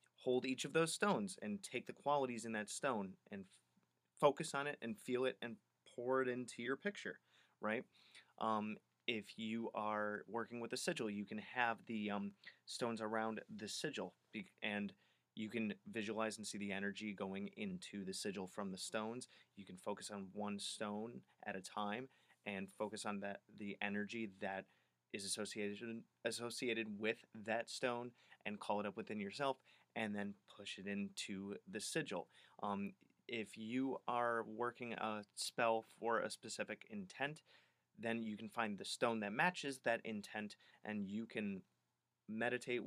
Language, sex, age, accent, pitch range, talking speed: English, male, 30-49, American, 105-120 Hz, 170 wpm